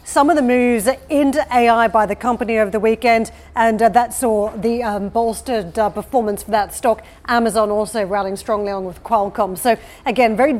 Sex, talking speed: female, 190 wpm